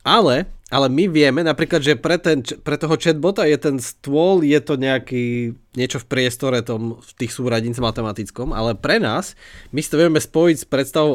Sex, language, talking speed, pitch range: male, Slovak, 185 wpm, 120-150 Hz